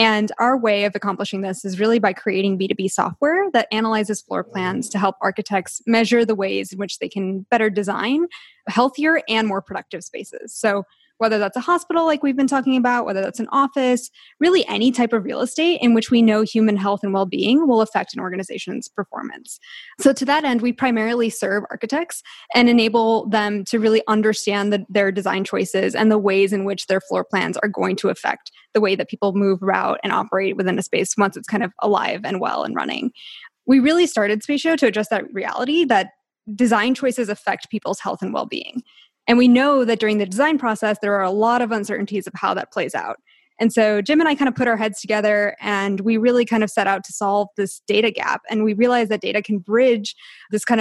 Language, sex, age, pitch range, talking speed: English, female, 10-29, 200-250 Hz, 215 wpm